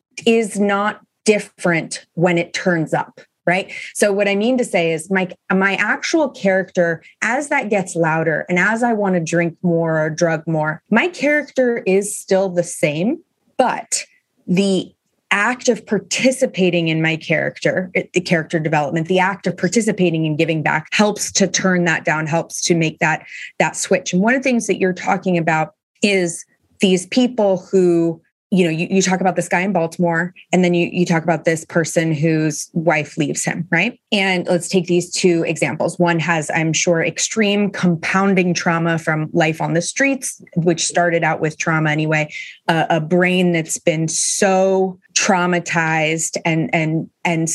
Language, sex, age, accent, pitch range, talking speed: English, female, 30-49, American, 165-195 Hz, 175 wpm